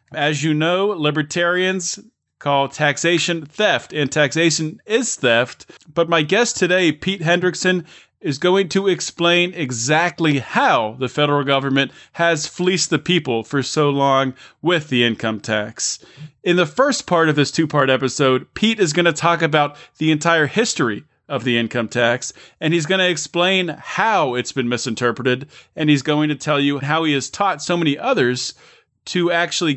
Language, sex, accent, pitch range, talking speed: English, male, American, 135-175 Hz, 165 wpm